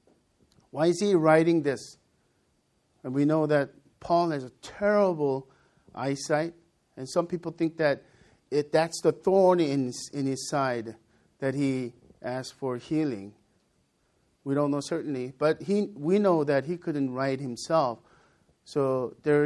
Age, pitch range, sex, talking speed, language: 50-69, 130-165 Hz, male, 150 wpm, English